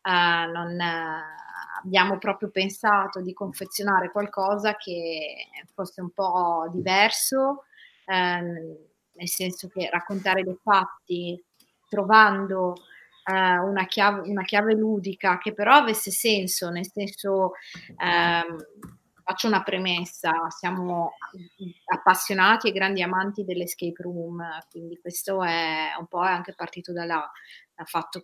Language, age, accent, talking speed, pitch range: Italian, 30-49, native, 100 wpm, 175-200 Hz